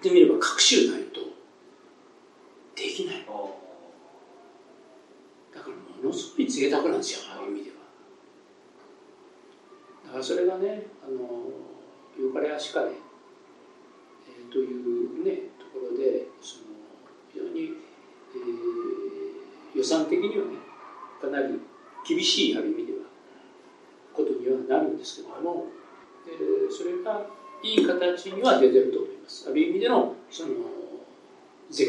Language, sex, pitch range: Japanese, male, 345-380 Hz